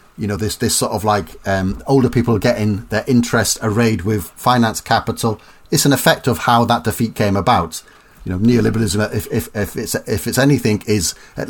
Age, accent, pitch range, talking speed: 40-59, British, 95-120 Hz, 200 wpm